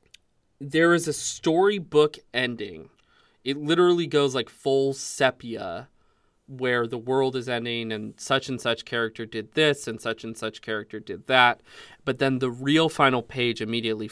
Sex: male